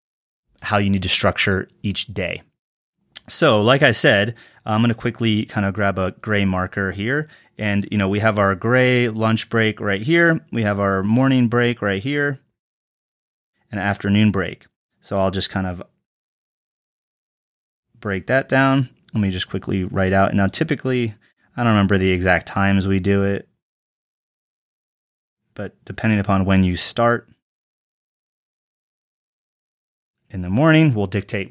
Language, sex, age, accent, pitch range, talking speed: English, male, 30-49, American, 100-120 Hz, 150 wpm